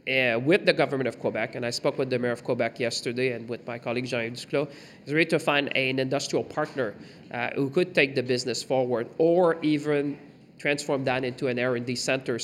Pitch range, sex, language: 115-145 Hz, male, English